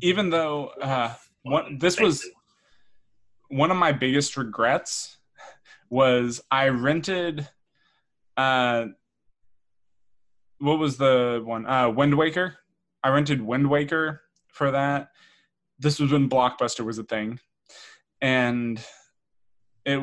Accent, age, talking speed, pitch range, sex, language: American, 20-39, 105 wpm, 115-145 Hz, male, English